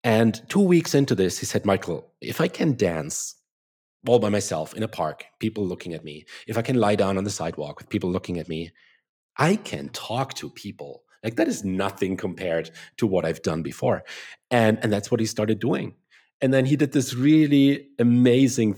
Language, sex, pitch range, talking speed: English, male, 100-130 Hz, 205 wpm